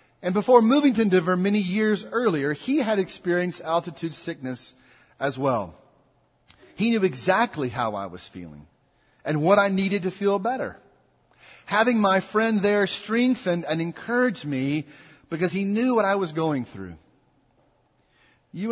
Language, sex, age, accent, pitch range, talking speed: English, male, 40-59, American, 140-190 Hz, 145 wpm